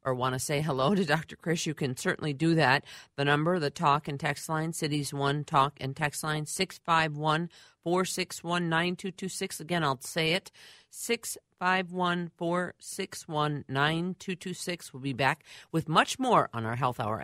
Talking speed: 155 wpm